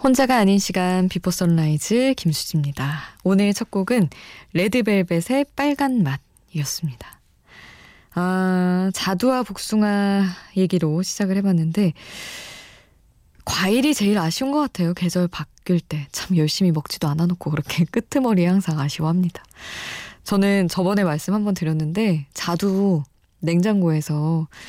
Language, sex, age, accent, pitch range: Korean, female, 20-39, native, 155-200 Hz